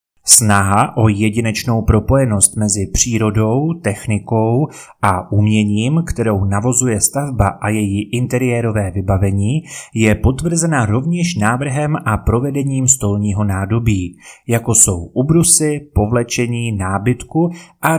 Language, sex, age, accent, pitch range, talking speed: Czech, male, 30-49, native, 105-130 Hz, 100 wpm